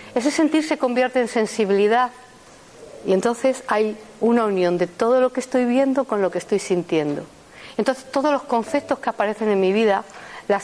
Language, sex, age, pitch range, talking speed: Spanish, female, 50-69, 200-265 Hz, 180 wpm